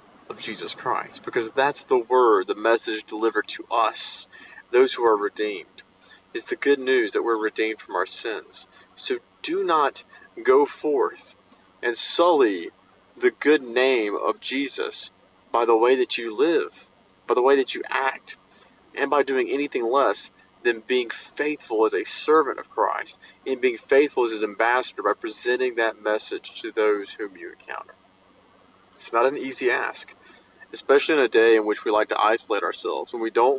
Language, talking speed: English, 175 wpm